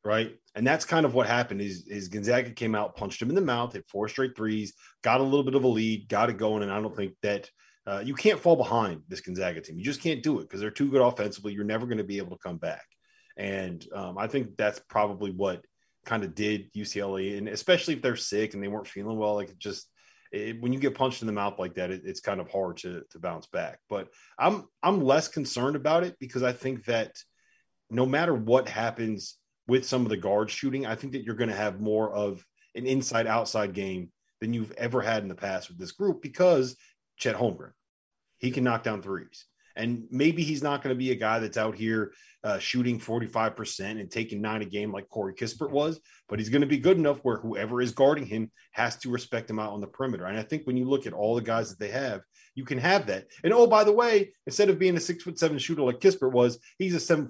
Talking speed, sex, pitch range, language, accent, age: 250 wpm, male, 105-135 Hz, English, American, 30-49